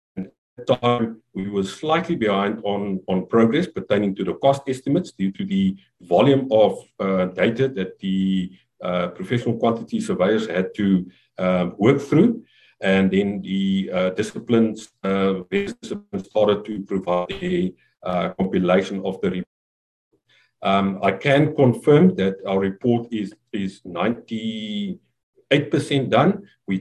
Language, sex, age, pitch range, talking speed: English, male, 50-69, 95-120 Hz, 130 wpm